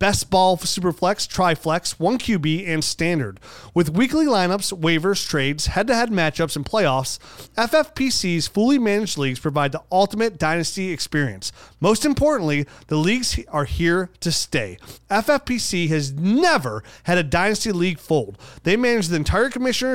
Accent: American